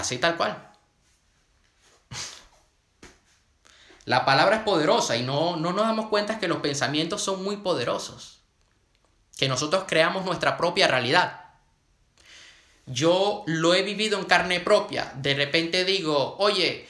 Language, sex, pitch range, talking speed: Spanish, male, 115-190 Hz, 130 wpm